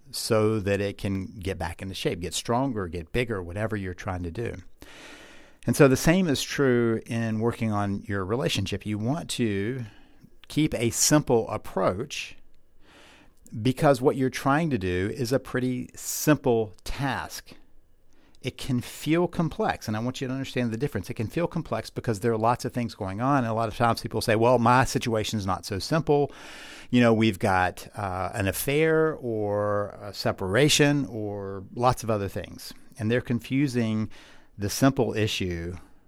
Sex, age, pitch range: male, 50-69, 100-125 Hz